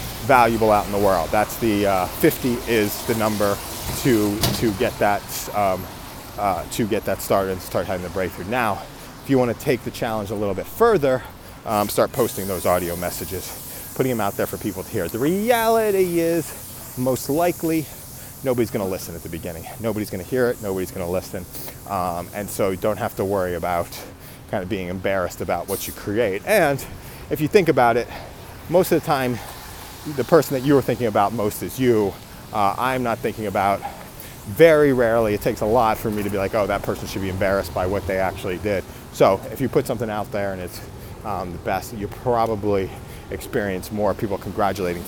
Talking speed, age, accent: 200 wpm, 30-49, American